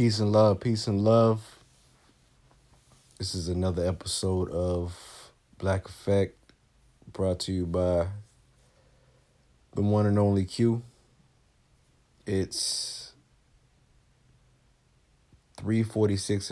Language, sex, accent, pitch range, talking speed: English, male, American, 90-110 Hz, 85 wpm